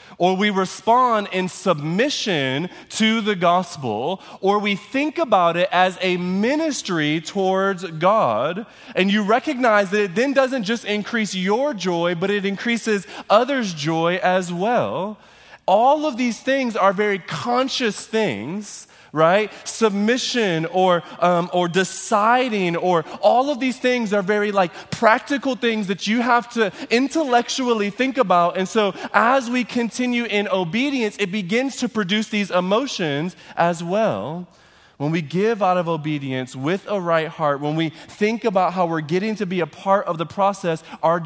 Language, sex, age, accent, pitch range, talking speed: English, male, 20-39, American, 155-210 Hz, 155 wpm